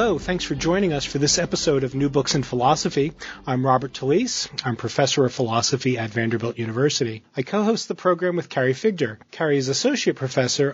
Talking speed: 195 wpm